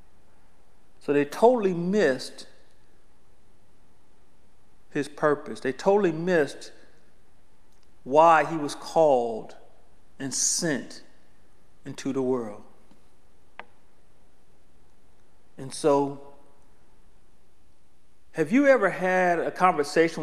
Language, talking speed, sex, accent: English, 75 wpm, male, American